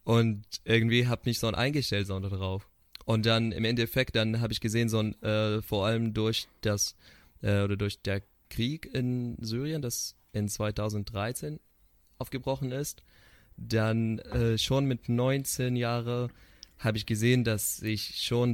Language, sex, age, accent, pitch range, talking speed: German, male, 20-39, German, 100-115 Hz, 160 wpm